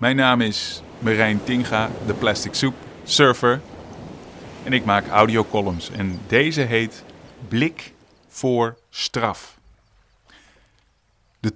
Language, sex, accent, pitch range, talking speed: Dutch, male, Dutch, 100-125 Hz, 110 wpm